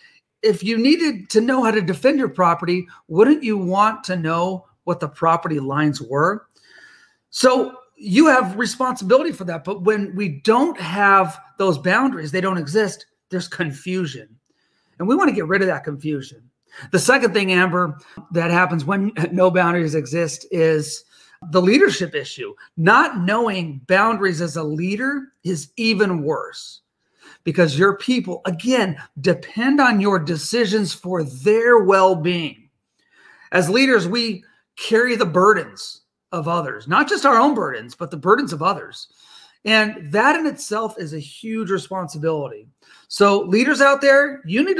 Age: 40-59